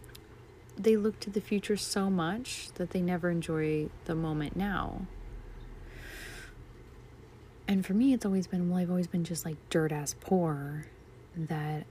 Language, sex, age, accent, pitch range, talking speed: English, female, 30-49, American, 155-205 Hz, 150 wpm